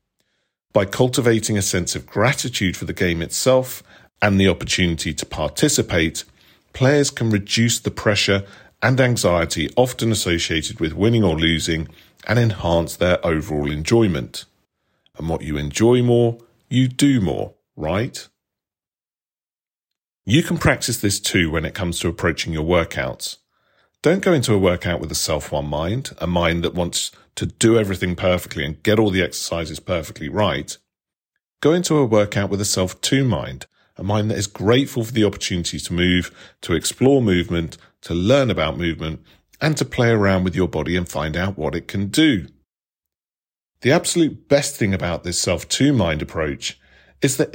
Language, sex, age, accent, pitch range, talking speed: English, male, 40-59, British, 85-120 Hz, 165 wpm